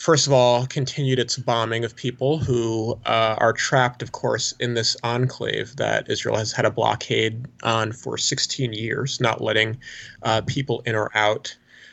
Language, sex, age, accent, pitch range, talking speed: English, male, 30-49, American, 115-135 Hz, 170 wpm